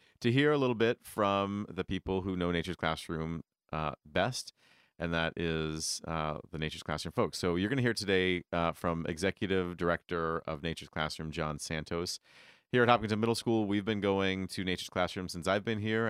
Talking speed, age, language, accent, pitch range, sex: 190 wpm, 30-49, English, American, 85-100 Hz, male